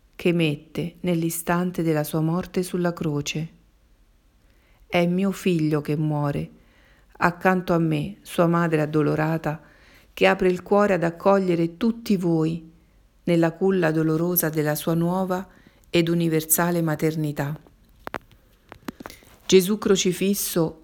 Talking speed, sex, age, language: 110 wpm, female, 50-69, Italian